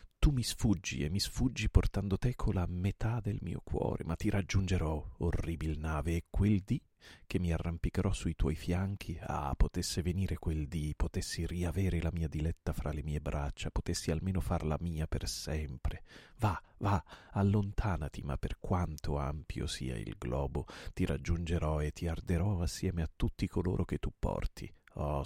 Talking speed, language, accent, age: 170 wpm, Italian, native, 40-59